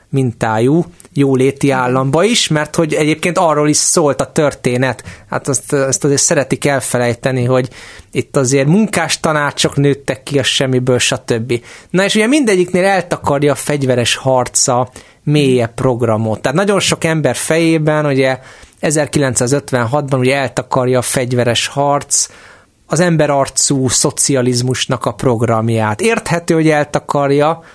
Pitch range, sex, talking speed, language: 130-165 Hz, male, 125 wpm, Hungarian